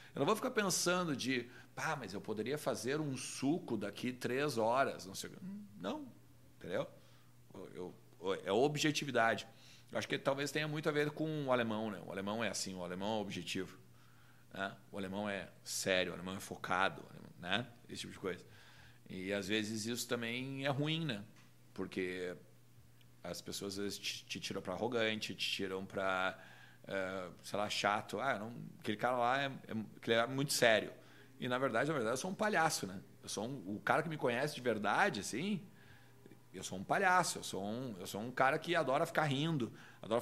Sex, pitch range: male, 100-145 Hz